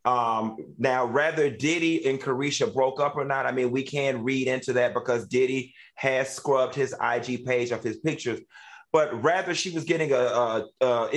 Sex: male